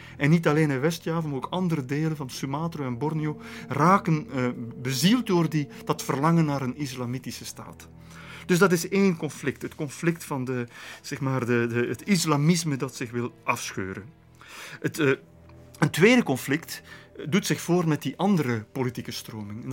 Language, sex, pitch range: Dutch, male, 125-160 Hz